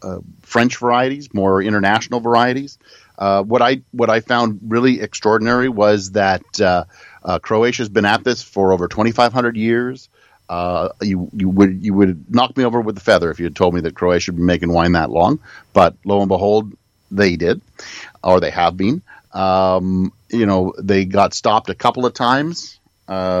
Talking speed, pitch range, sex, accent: 185 wpm, 95-120 Hz, male, American